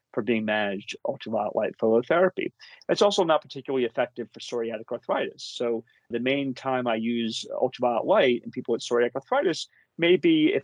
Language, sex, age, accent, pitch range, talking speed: English, male, 40-59, American, 120-150 Hz, 165 wpm